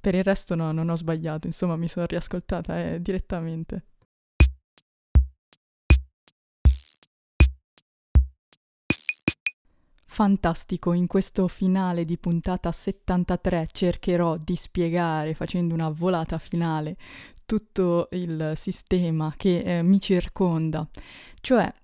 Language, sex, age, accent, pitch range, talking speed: Italian, female, 20-39, native, 165-190 Hz, 95 wpm